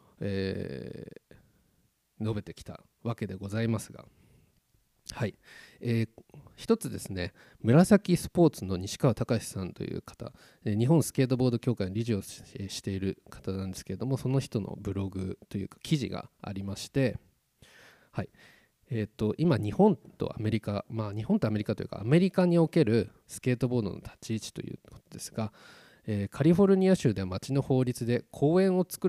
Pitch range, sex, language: 105-155 Hz, male, Japanese